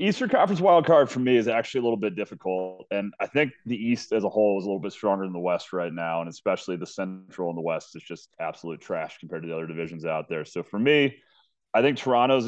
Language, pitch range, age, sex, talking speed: English, 90-110 Hz, 30-49, male, 255 wpm